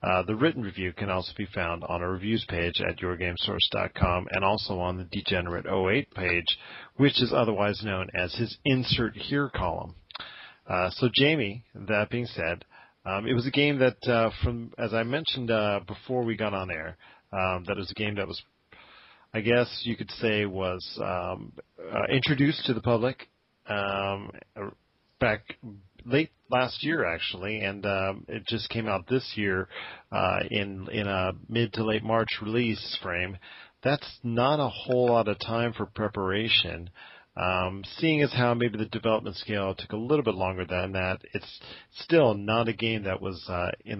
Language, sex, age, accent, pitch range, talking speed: English, male, 40-59, American, 95-120 Hz, 175 wpm